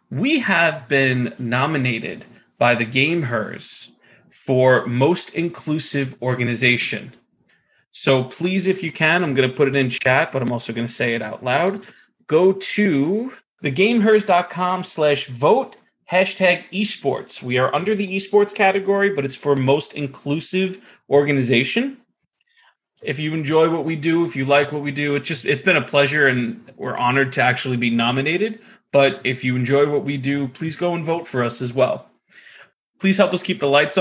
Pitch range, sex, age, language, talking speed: 125-165 Hz, male, 30-49, English, 165 wpm